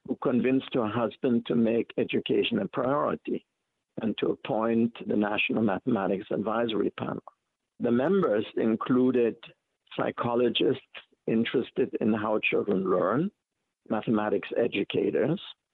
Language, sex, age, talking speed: English, male, 60-79, 105 wpm